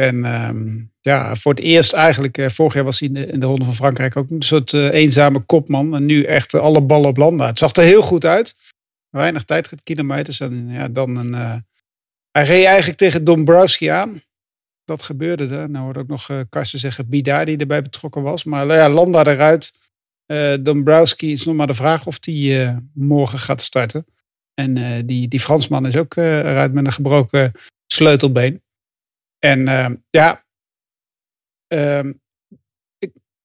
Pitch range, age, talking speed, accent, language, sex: 135-160 Hz, 50-69, 185 wpm, Dutch, English, male